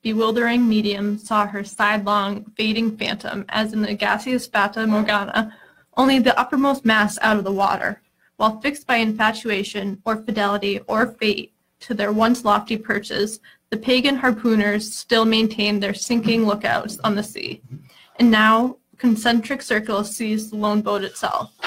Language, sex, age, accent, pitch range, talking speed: English, female, 20-39, American, 210-230 Hz, 150 wpm